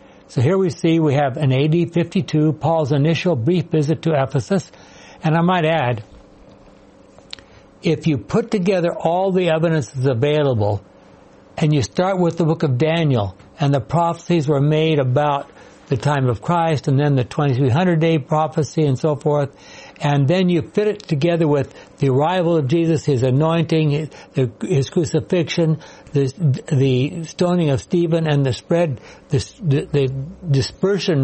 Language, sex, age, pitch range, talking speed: English, male, 60-79, 140-170 Hz, 155 wpm